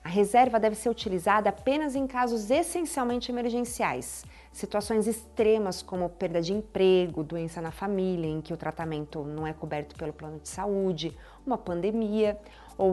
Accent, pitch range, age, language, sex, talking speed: Brazilian, 185-250 Hz, 40-59, Portuguese, female, 155 wpm